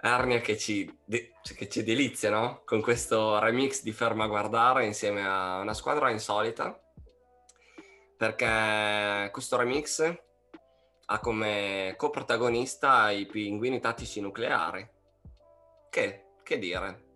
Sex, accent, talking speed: male, native, 115 wpm